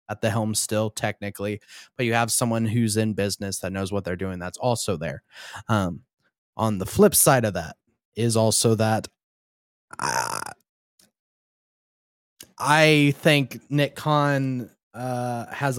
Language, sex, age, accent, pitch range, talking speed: English, male, 20-39, American, 110-140 Hz, 135 wpm